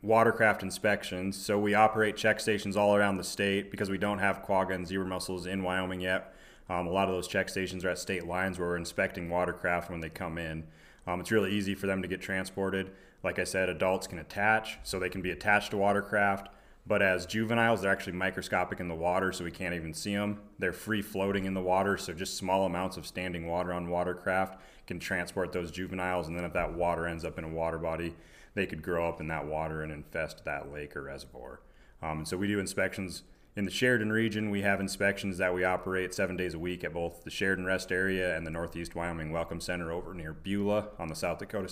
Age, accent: 30-49, American